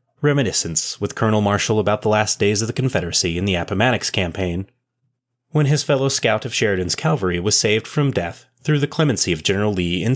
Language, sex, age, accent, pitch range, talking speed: English, male, 30-49, American, 95-130 Hz, 195 wpm